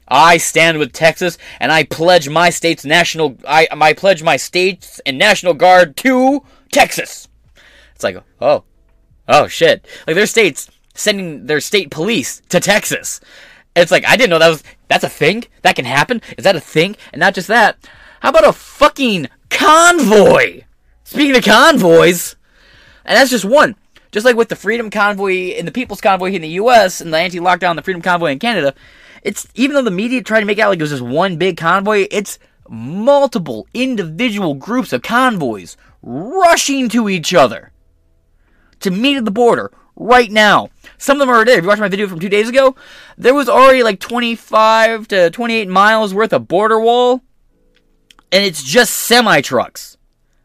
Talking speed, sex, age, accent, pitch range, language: 180 wpm, male, 20-39, American, 165-245 Hz, English